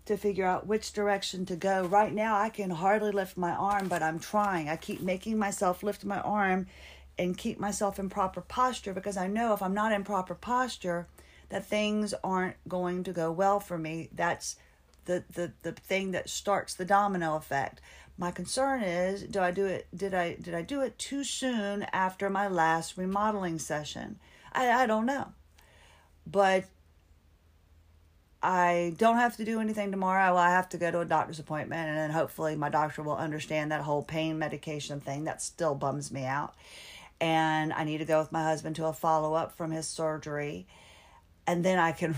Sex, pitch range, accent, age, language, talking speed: female, 155-195 Hz, American, 40-59, English, 190 wpm